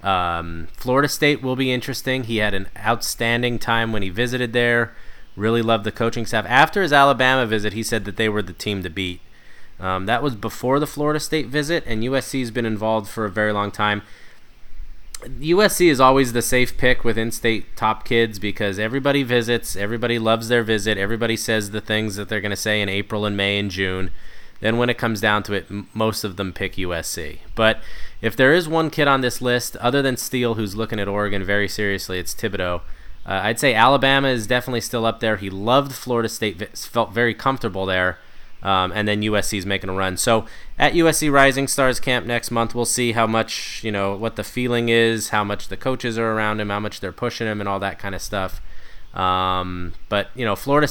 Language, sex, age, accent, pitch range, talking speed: English, male, 20-39, American, 100-125 Hz, 215 wpm